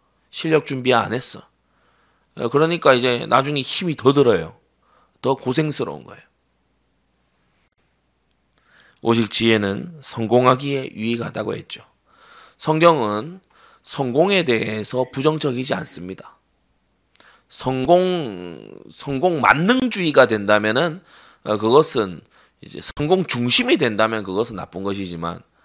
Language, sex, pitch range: Korean, male, 105-150 Hz